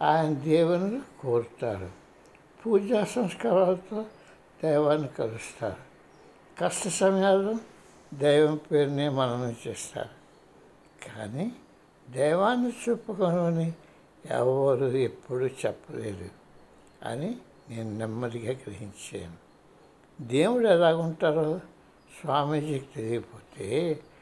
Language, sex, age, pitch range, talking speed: Telugu, male, 60-79, 130-190 Hz, 70 wpm